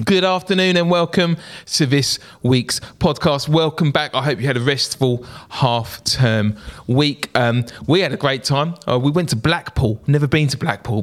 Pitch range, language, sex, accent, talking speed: 120-160 Hz, English, male, British, 185 wpm